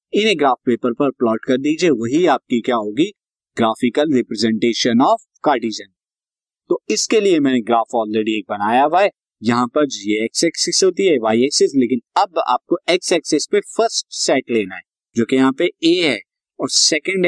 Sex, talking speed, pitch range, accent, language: male, 185 wpm, 125-175 Hz, native, Hindi